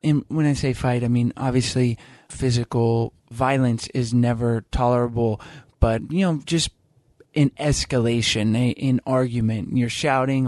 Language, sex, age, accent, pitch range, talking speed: English, male, 20-39, American, 120-140 Hz, 125 wpm